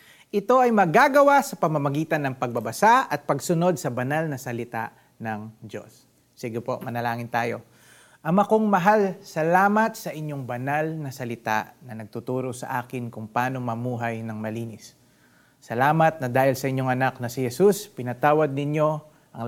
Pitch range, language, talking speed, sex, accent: 120-170 Hz, Filipino, 150 wpm, male, native